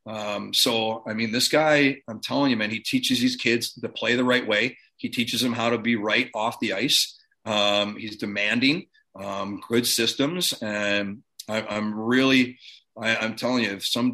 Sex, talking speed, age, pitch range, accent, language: male, 190 wpm, 30-49, 105-125 Hz, American, English